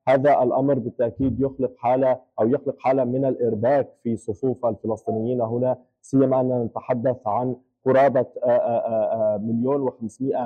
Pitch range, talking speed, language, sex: 120-135 Hz, 120 wpm, Arabic, male